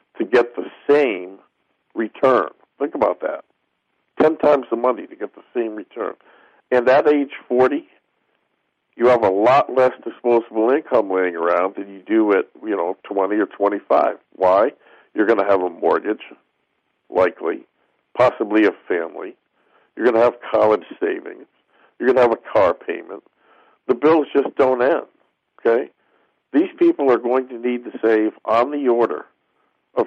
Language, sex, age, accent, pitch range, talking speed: English, male, 50-69, American, 110-145 Hz, 160 wpm